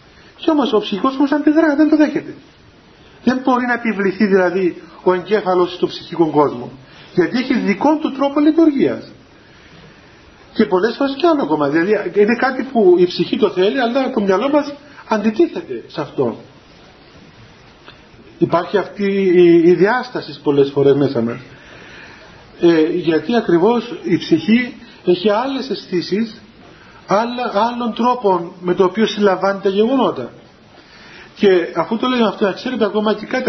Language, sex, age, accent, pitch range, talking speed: Greek, male, 40-59, native, 175-245 Hz, 140 wpm